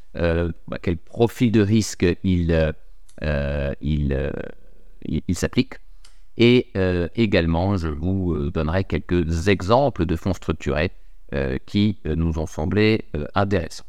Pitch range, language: 80-95 Hz, French